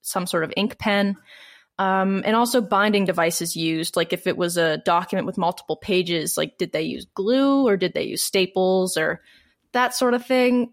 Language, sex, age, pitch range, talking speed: English, female, 10-29, 180-230 Hz, 195 wpm